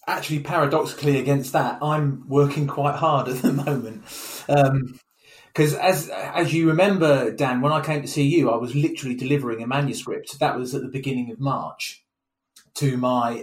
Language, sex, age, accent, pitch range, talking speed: English, male, 30-49, British, 135-160 Hz, 175 wpm